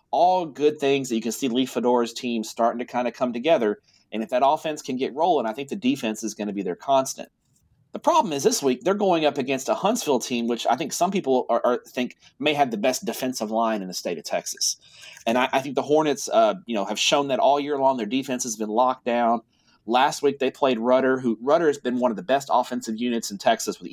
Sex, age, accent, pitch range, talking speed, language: male, 30-49, American, 115-140 Hz, 260 wpm, English